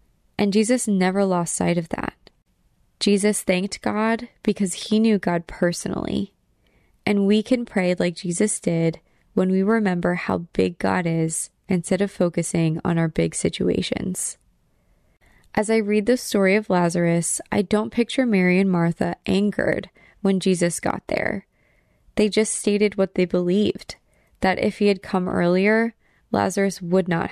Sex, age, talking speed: female, 20-39, 150 wpm